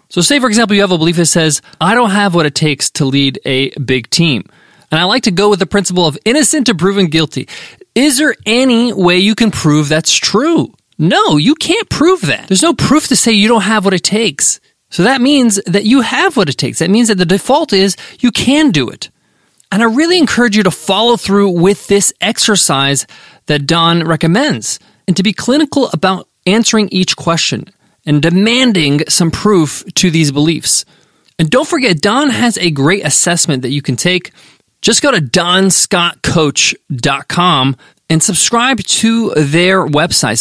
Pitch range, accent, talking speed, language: 155-225 Hz, American, 190 wpm, English